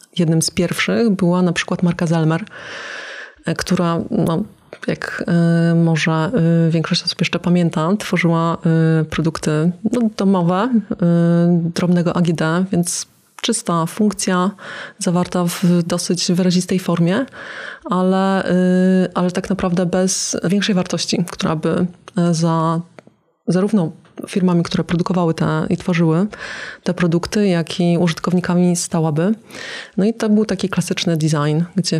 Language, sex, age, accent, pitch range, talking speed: Polish, female, 20-39, native, 170-195 Hz, 115 wpm